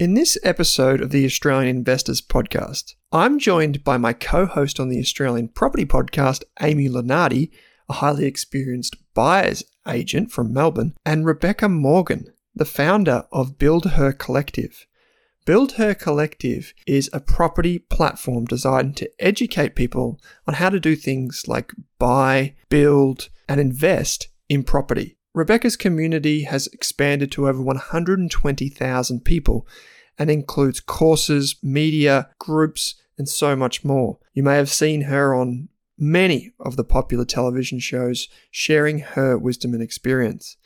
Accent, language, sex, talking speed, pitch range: Australian, English, male, 140 wpm, 130-160 Hz